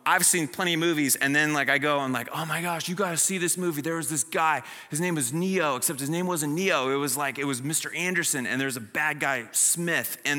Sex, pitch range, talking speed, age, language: male, 135-180 Hz, 275 wpm, 20-39, English